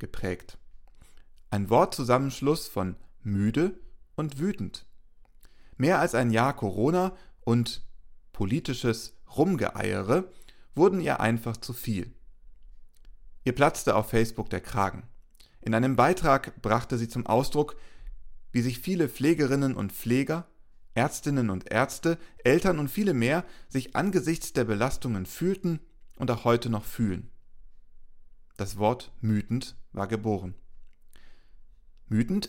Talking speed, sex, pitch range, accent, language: 115 wpm, male, 105-135 Hz, German, German